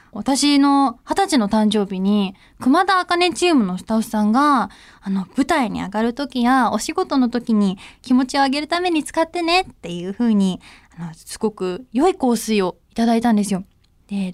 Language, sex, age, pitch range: Japanese, female, 20-39, 205-285 Hz